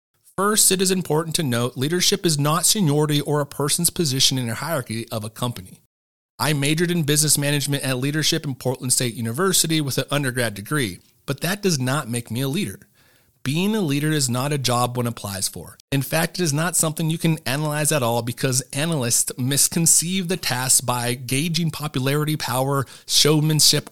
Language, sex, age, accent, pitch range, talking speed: English, male, 30-49, American, 120-155 Hz, 185 wpm